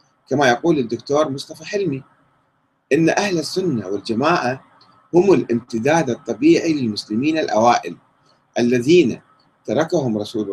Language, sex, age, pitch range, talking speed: Arabic, male, 30-49, 120-170 Hz, 95 wpm